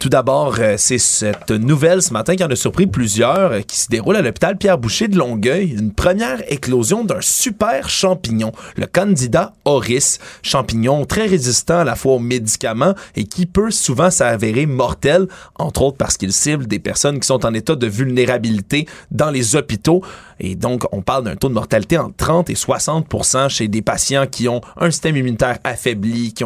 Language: French